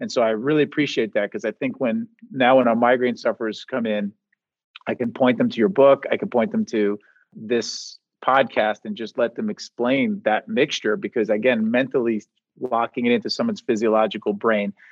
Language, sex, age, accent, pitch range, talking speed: English, male, 40-59, American, 115-145 Hz, 190 wpm